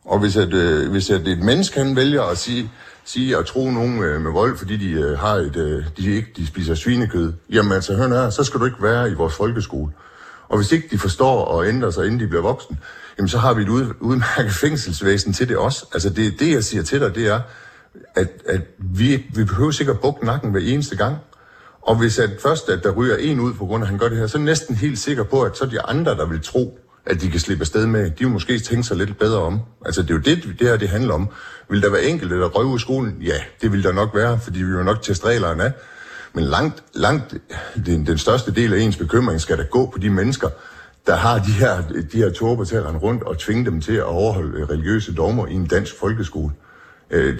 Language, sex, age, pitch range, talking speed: Danish, male, 60-79, 90-120 Hz, 245 wpm